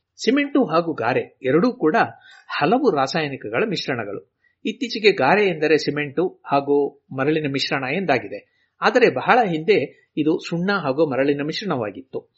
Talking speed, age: 115 wpm, 60-79